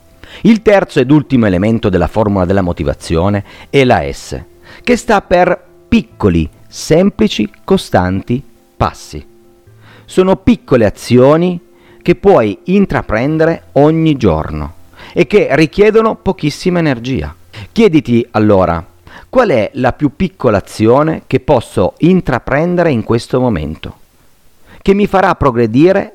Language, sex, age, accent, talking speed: Italian, male, 50-69, native, 115 wpm